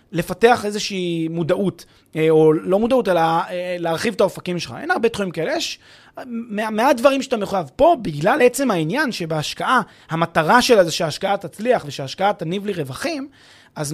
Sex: male